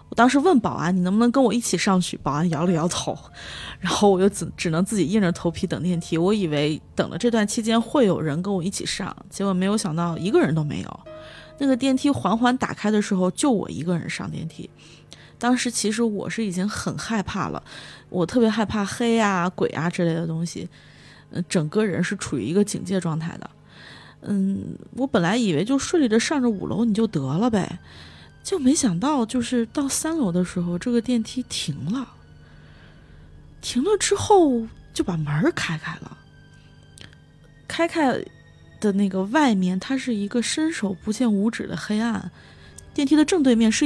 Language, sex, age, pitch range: Chinese, female, 20-39, 170-240 Hz